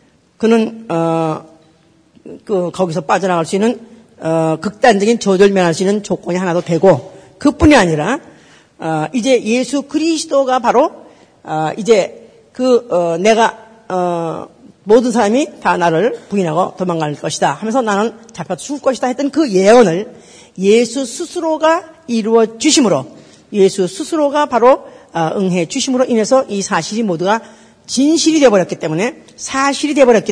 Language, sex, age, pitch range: Korean, female, 40-59, 180-265 Hz